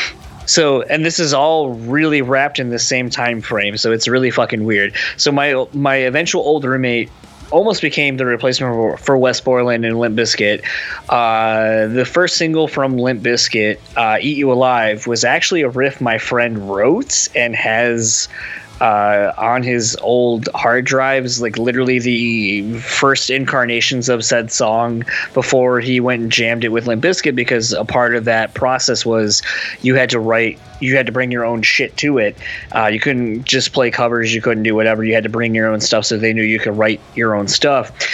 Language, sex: English, male